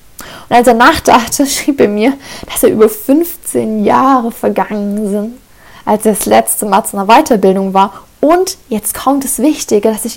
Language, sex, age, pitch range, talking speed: German, female, 10-29, 220-275 Hz, 175 wpm